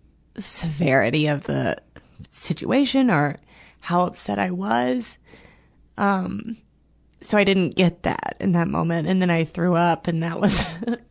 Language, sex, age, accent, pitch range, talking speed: English, female, 30-49, American, 140-190 Hz, 140 wpm